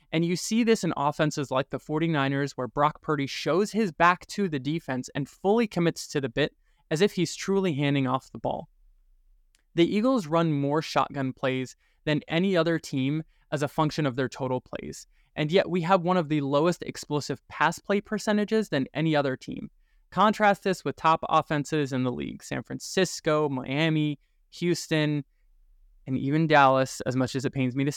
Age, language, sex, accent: 20-39, English, male, American